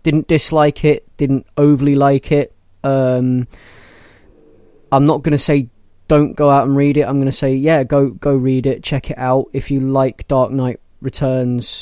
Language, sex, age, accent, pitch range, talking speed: English, male, 20-39, British, 120-145 Hz, 190 wpm